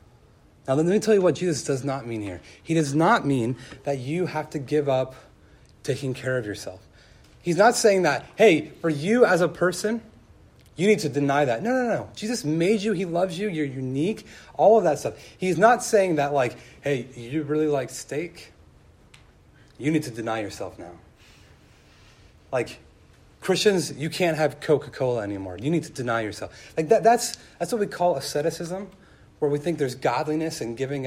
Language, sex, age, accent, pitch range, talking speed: English, male, 30-49, American, 130-175 Hz, 190 wpm